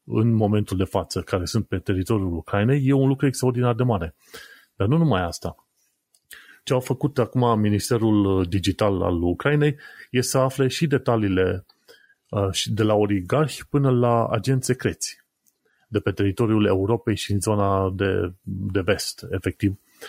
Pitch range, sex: 100-130 Hz, male